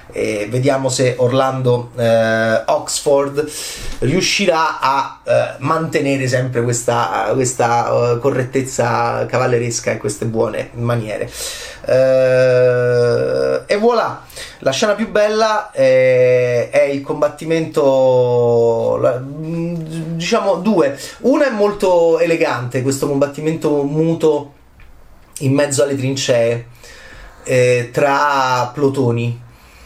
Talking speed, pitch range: 90 wpm, 120-155 Hz